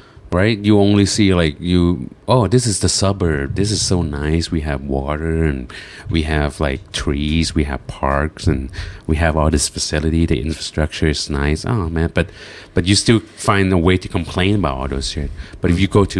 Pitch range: 80-110 Hz